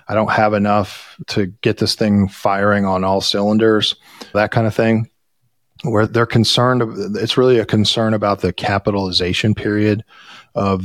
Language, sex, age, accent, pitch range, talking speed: English, male, 40-59, American, 100-115 Hz, 155 wpm